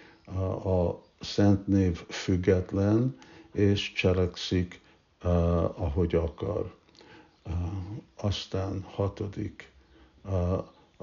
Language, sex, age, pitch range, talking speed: Hungarian, male, 60-79, 85-100 Hz, 65 wpm